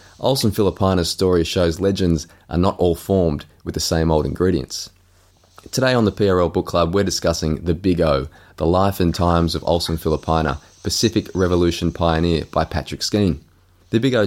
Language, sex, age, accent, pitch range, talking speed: English, male, 20-39, Australian, 85-100 Hz, 170 wpm